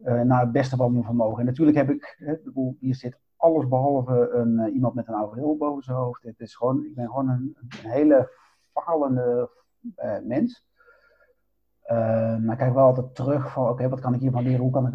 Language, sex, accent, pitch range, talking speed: Dutch, male, Dutch, 120-150 Hz, 225 wpm